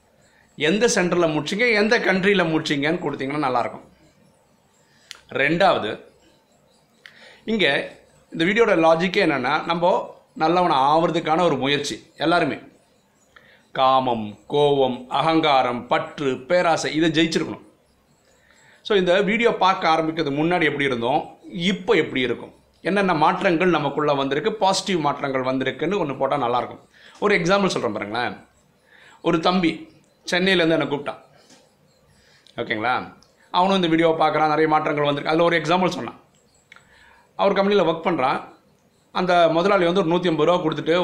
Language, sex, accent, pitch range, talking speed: Tamil, male, native, 145-180 Hz, 120 wpm